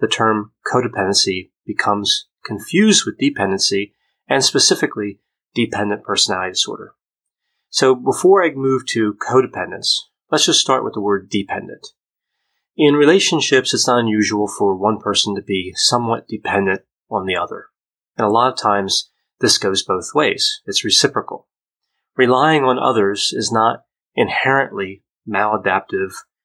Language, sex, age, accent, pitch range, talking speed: English, male, 30-49, American, 100-130 Hz, 130 wpm